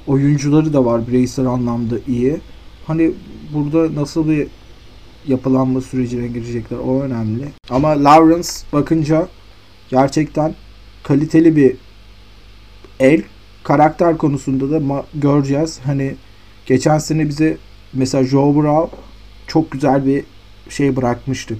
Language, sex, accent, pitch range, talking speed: Turkish, male, native, 110-150 Hz, 110 wpm